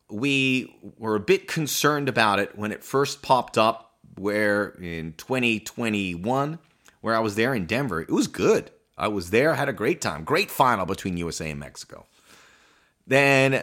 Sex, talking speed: male, 165 wpm